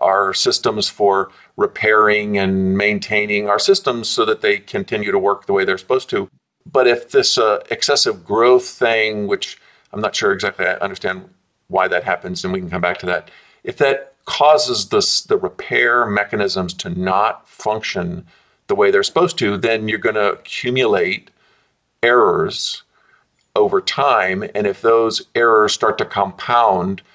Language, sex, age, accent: English, male, 50-69, American